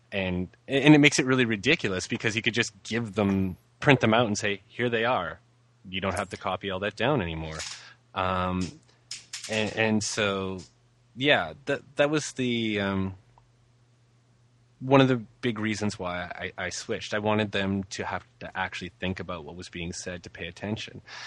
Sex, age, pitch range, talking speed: male, 20-39, 95-120 Hz, 185 wpm